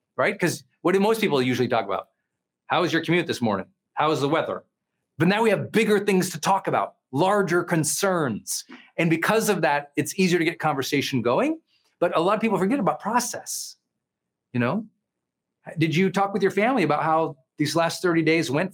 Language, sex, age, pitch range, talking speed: English, male, 40-59, 135-190 Hz, 200 wpm